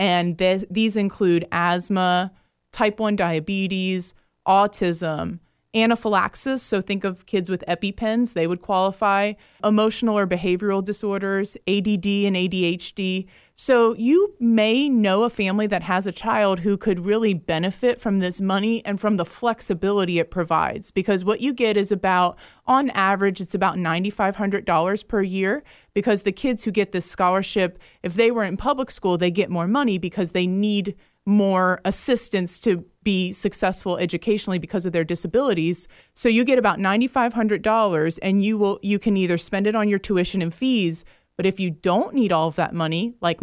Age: 30-49